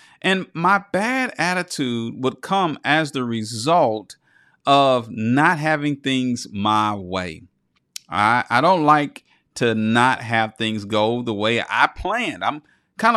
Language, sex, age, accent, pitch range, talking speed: English, male, 40-59, American, 110-150 Hz, 135 wpm